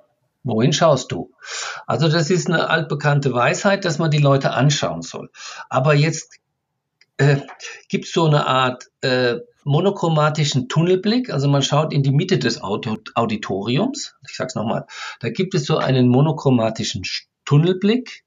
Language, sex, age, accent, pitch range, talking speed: German, male, 50-69, German, 140-195 Hz, 145 wpm